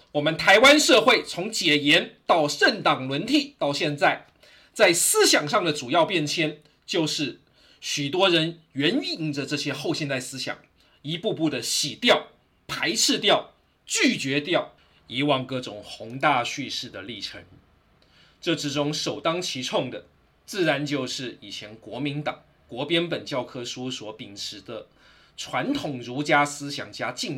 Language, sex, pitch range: Chinese, male, 120-165 Hz